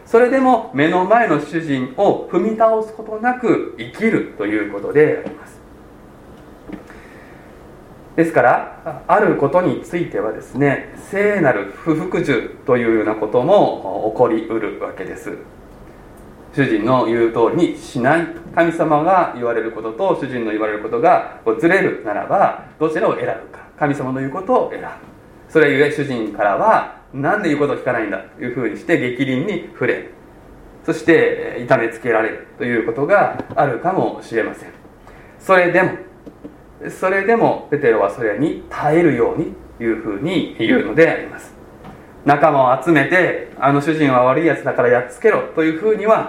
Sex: male